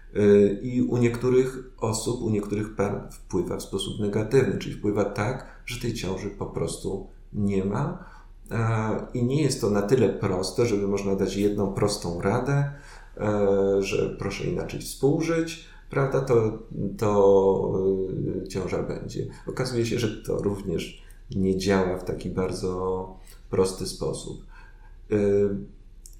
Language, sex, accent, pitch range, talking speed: Polish, male, native, 100-120 Hz, 130 wpm